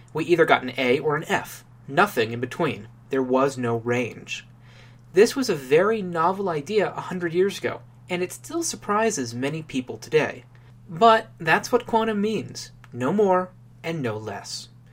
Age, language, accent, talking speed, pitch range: 30-49, English, American, 170 wpm, 120-175 Hz